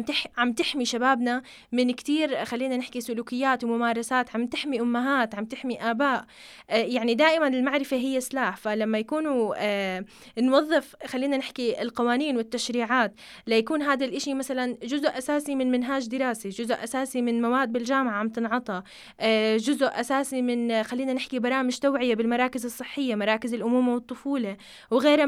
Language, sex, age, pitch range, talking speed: Arabic, female, 20-39, 230-270 Hz, 140 wpm